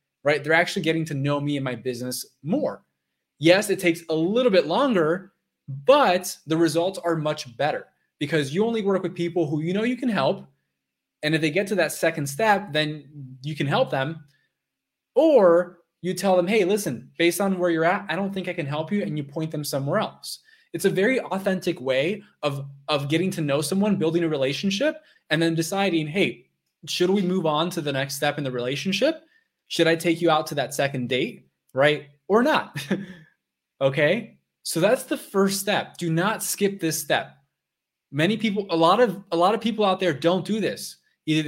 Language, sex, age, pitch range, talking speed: English, male, 20-39, 140-195 Hz, 205 wpm